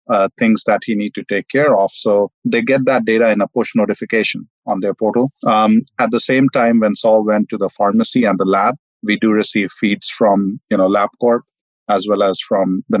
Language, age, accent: English, 30-49, Indian